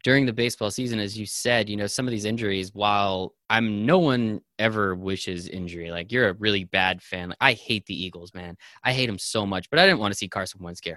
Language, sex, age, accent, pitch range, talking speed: English, male, 20-39, American, 100-130 Hz, 250 wpm